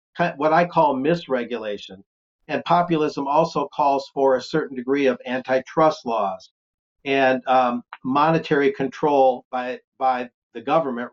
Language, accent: English, American